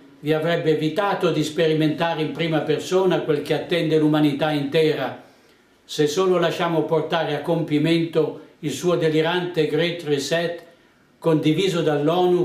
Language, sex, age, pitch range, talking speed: Italian, male, 60-79, 150-180 Hz, 125 wpm